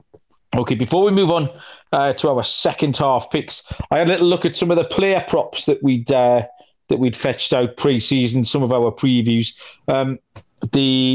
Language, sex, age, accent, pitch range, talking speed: English, male, 40-59, British, 125-165 Hz, 190 wpm